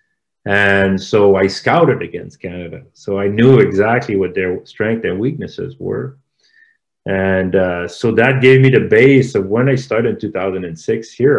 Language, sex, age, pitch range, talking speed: English, male, 40-59, 95-130 Hz, 160 wpm